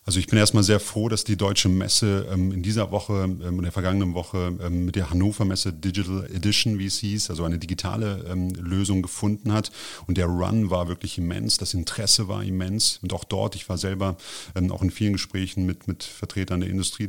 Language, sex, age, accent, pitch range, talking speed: German, male, 30-49, German, 90-105 Hz, 200 wpm